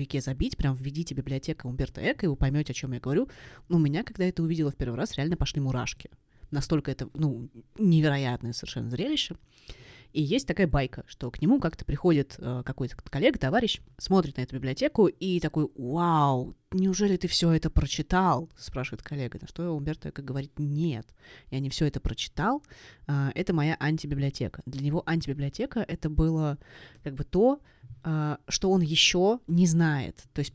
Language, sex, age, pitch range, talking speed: Russian, female, 20-39, 135-165 Hz, 175 wpm